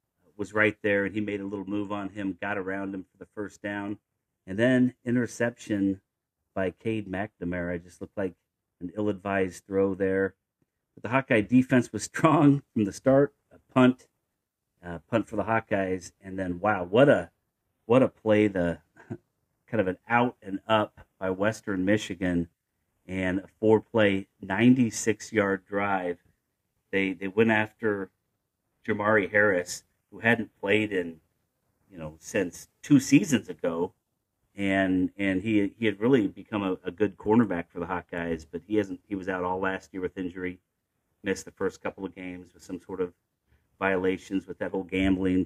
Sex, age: male, 40-59